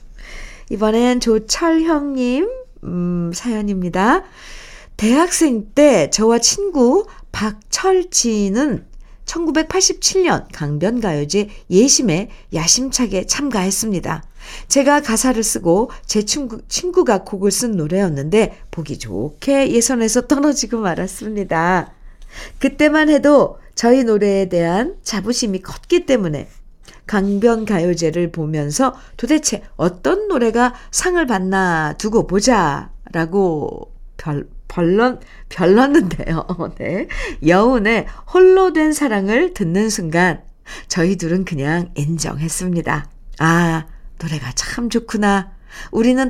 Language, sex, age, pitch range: Korean, female, 50-69, 175-265 Hz